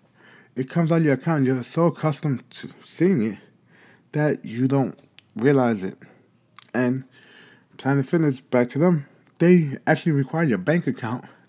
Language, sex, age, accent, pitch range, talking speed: English, male, 20-39, American, 125-155 Hz, 150 wpm